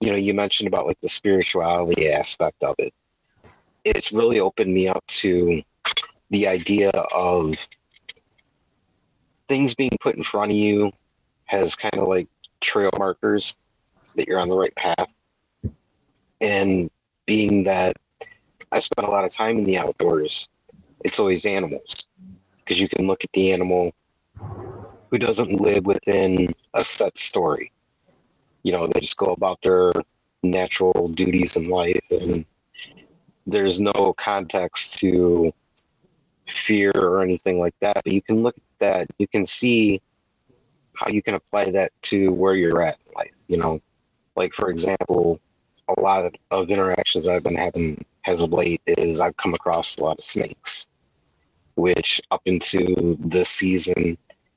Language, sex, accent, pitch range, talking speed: English, male, American, 90-100 Hz, 150 wpm